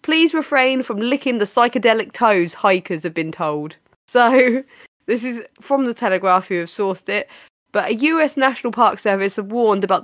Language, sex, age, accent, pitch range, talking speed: English, female, 20-39, British, 185-260 Hz, 180 wpm